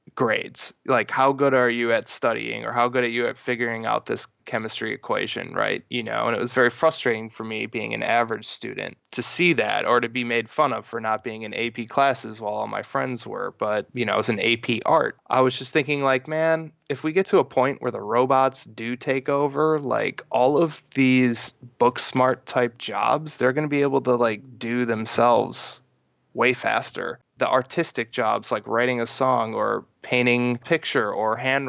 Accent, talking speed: American, 210 wpm